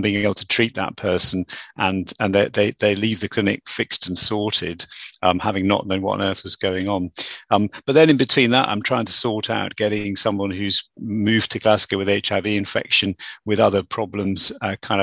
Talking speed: 210 wpm